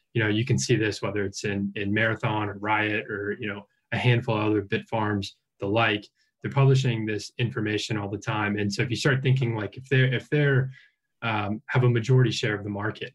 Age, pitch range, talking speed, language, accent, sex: 20-39, 105-120 Hz, 230 wpm, English, American, male